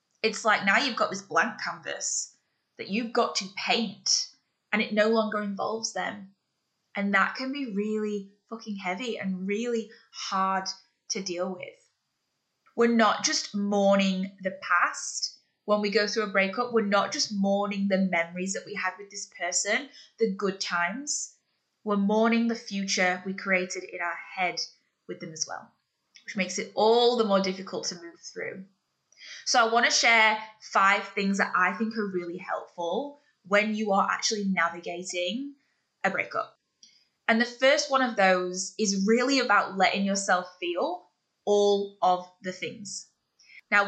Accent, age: British, 10-29